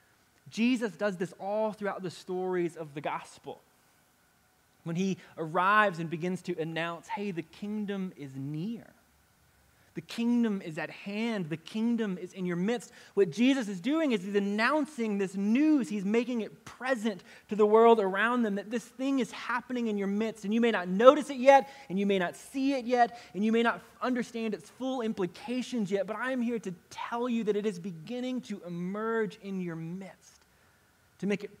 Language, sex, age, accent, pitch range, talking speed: English, male, 20-39, American, 170-225 Hz, 190 wpm